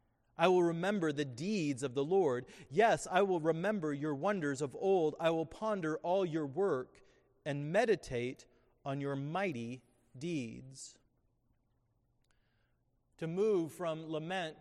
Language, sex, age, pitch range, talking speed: English, male, 30-49, 135-195 Hz, 130 wpm